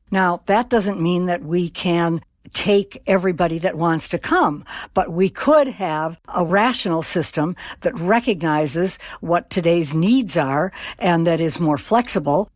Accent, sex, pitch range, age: American, female, 175-205 Hz, 60-79